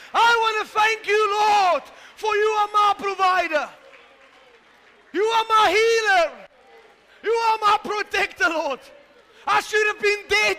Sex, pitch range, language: male, 330-415 Hz, English